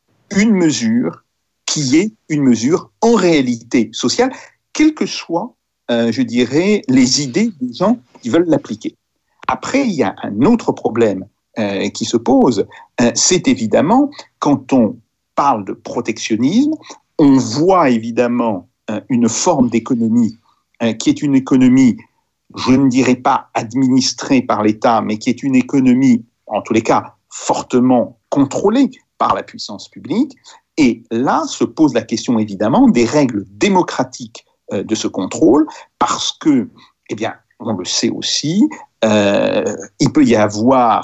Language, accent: French, French